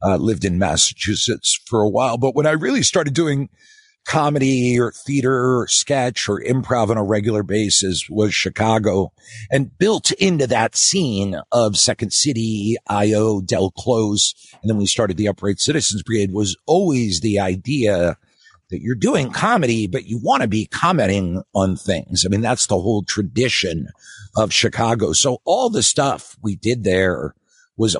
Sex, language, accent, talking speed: male, English, American, 165 wpm